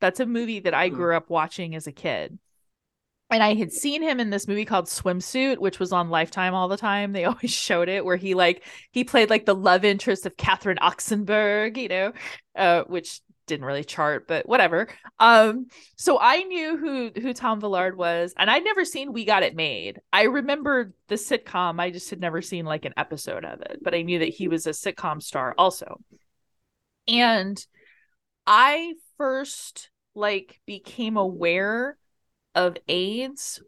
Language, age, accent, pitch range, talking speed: English, 20-39, American, 170-215 Hz, 180 wpm